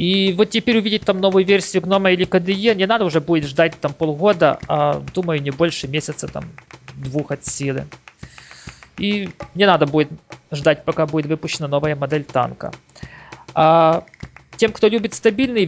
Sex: male